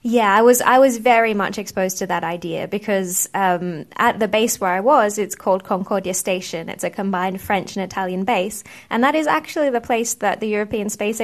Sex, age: female, 20-39